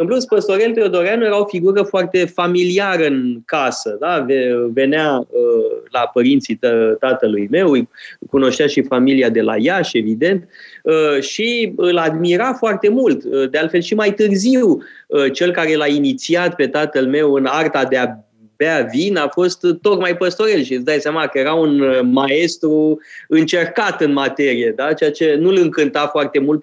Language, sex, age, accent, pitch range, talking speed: Romanian, male, 20-39, native, 135-205 Hz, 160 wpm